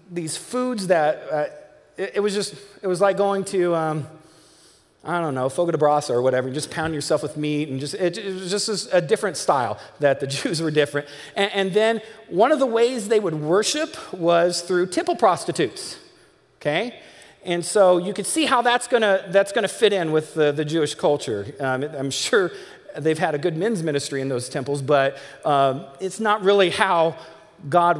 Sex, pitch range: male, 145-220 Hz